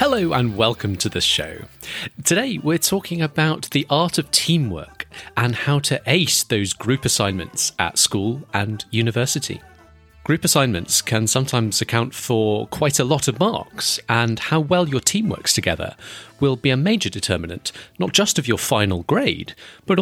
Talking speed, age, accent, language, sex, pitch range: 165 wpm, 30-49, British, English, male, 105-155 Hz